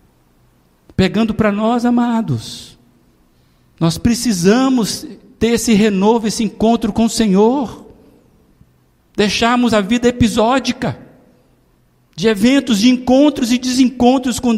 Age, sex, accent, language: 60-79, male, Brazilian, Portuguese